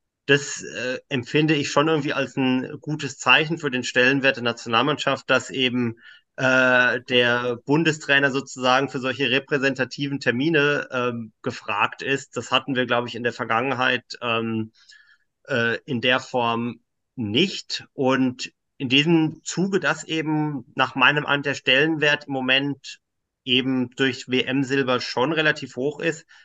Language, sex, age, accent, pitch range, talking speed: German, male, 30-49, German, 125-145 Hz, 140 wpm